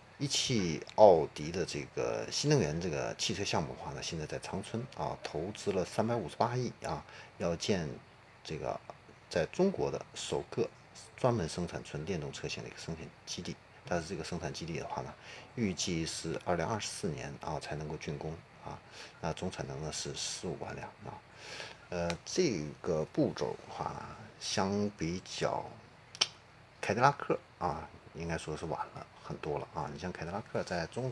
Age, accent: 50-69, native